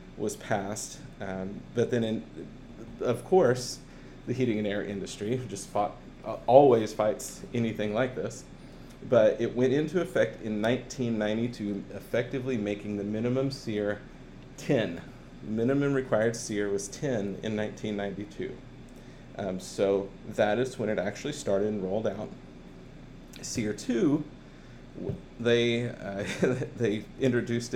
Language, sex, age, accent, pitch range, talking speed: English, male, 40-59, American, 105-130 Hz, 120 wpm